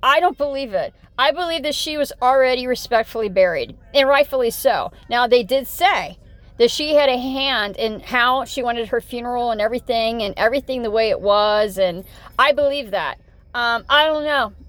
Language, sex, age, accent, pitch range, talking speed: English, female, 40-59, American, 235-295 Hz, 190 wpm